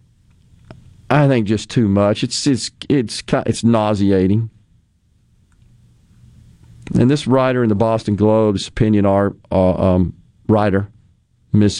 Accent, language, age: American, English, 50-69